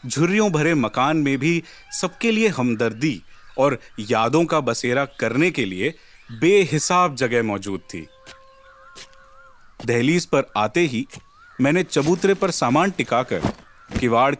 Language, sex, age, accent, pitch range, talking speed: Hindi, male, 40-59, native, 120-165 Hz, 120 wpm